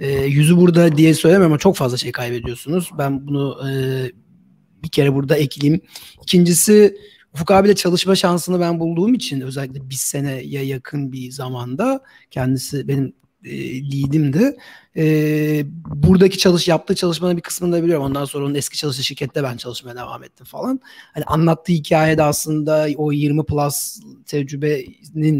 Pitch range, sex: 135-170 Hz, male